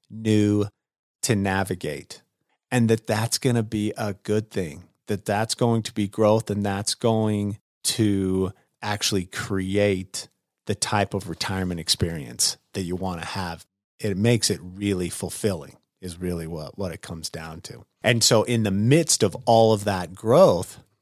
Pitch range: 100-130 Hz